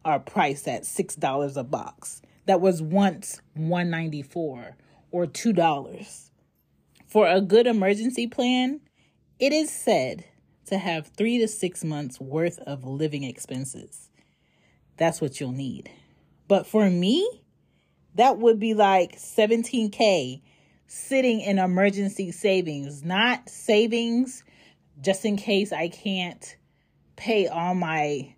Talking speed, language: 130 wpm, English